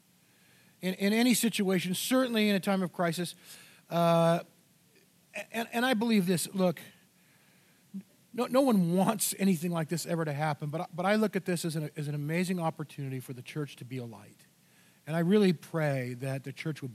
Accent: American